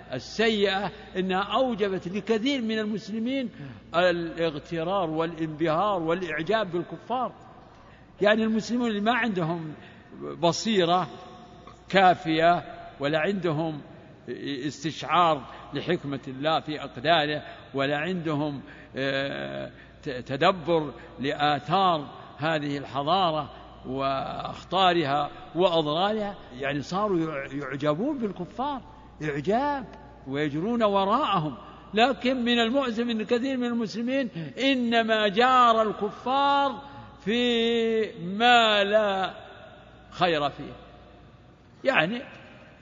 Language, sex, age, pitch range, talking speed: Arabic, male, 60-79, 155-225 Hz, 75 wpm